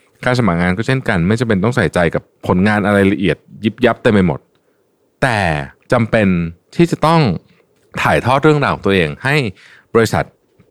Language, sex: Thai, male